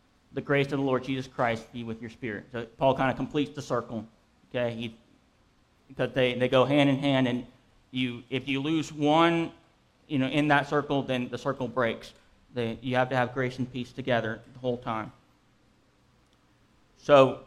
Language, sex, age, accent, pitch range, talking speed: English, male, 40-59, American, 120-135 Hz, 190 wpm